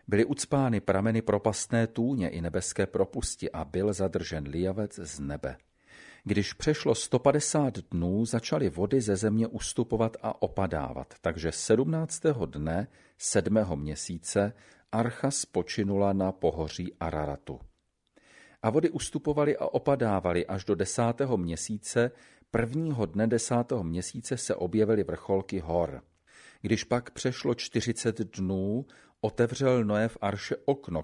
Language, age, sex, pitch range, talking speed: Slovak, 40-59, male, 90-125 Hz, 120 wpm